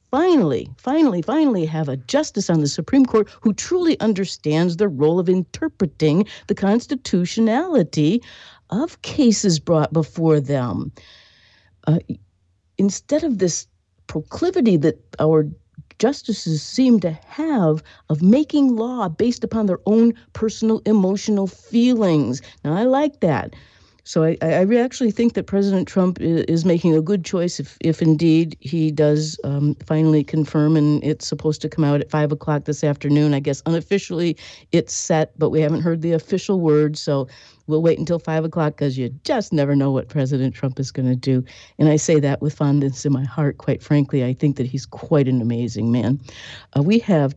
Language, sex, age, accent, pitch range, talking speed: English, female, 50-69, American, 145-205 Hz, 170 wpm